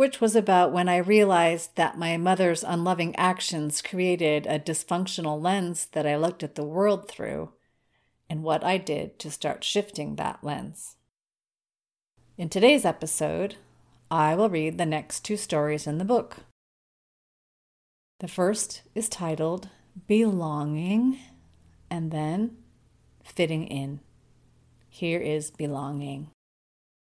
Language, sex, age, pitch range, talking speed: English, female, 30-49, 150-195 Hz, 125 wpm